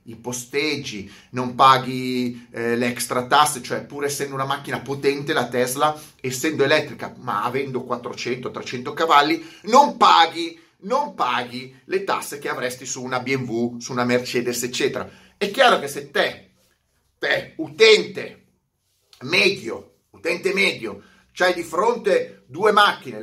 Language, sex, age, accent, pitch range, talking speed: Italian, male, 30-49, native, 130-190 Hz, 135 wpm